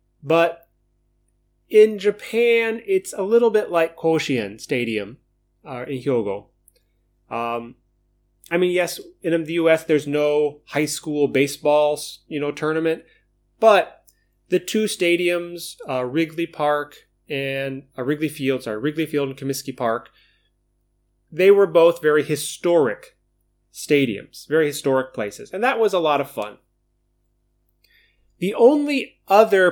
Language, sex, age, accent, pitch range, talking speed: English, male, 30-49, American, 130-165 Hz, 130 wpm